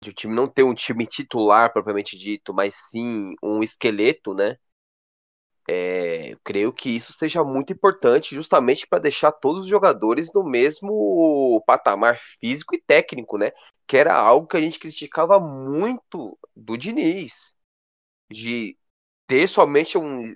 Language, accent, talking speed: Portuguese, Brazilian, 150 wpm